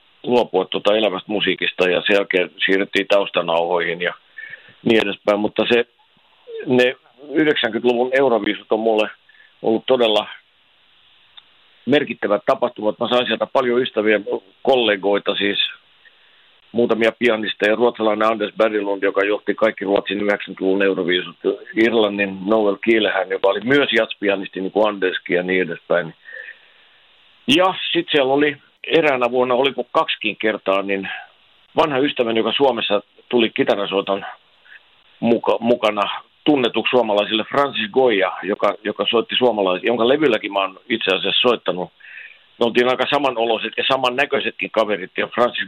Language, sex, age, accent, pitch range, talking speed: Finnish, male, 50-69, native, 100-125 Hz, 125 wpm